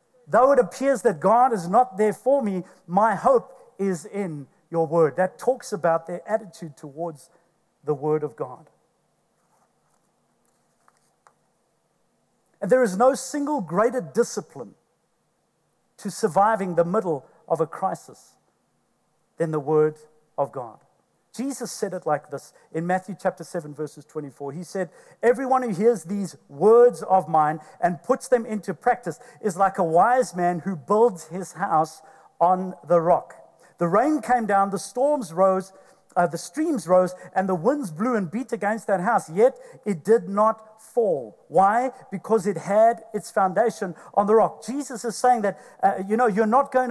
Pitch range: 175-235 Hz